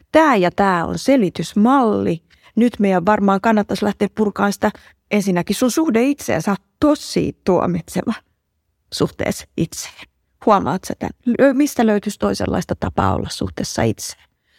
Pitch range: 180-220 Hz